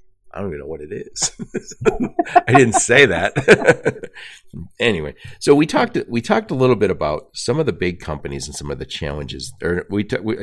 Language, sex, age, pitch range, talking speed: English, male, 50-69, 85-120 Hz, 195 wpm